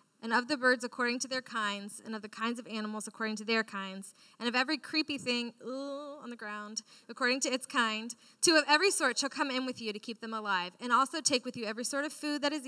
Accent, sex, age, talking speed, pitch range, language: American, female, 20-39, 255 wpm, 220-290 Hz, English